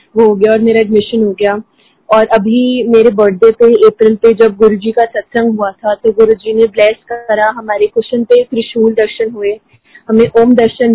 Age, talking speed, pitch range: 20-39, 175 wpm, 215-240 Hz